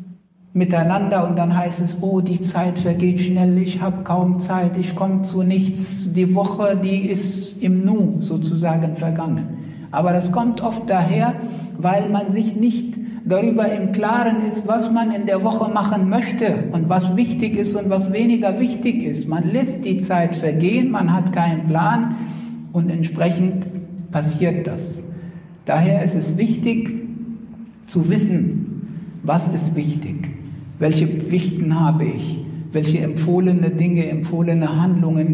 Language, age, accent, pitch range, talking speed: German, 60-79, German, 170-200 Hz, 145 wpm